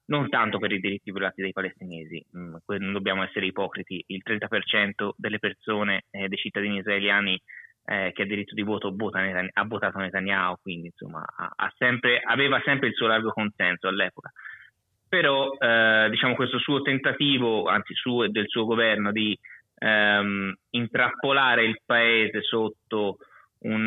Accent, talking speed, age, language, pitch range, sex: native, 155 wpm, 20-39, Italian, 100-120 Hz, male